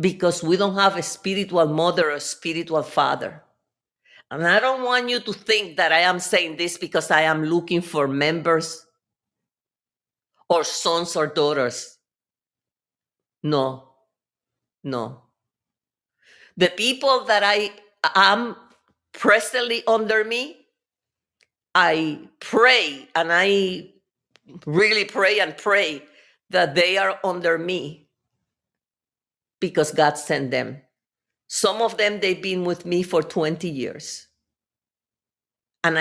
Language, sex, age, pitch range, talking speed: English, female, 50-69, 145-195 Hz, 115 wpm